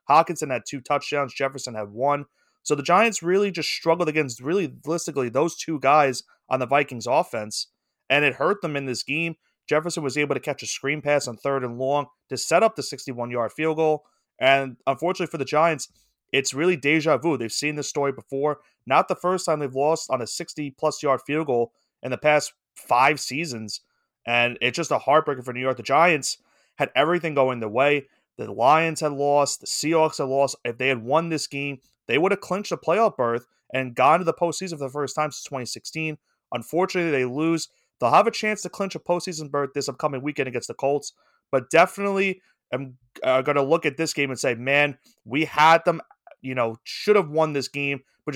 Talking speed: 210 wpm